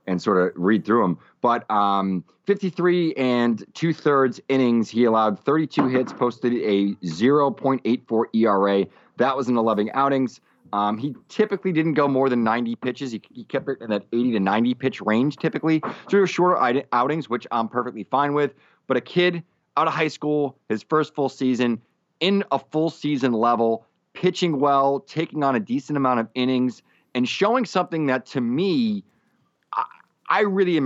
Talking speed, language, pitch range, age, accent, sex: 175 wpm, English, 115-150 Hz, 30-49, American, male